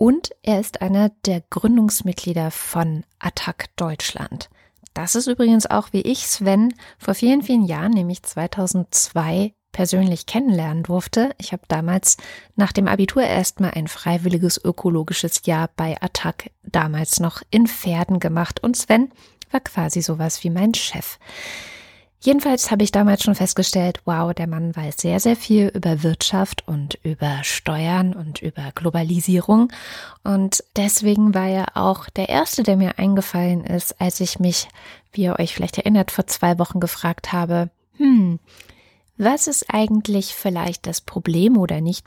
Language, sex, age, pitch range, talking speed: German, female, 20-39, 170-205 Hz, 150 wpm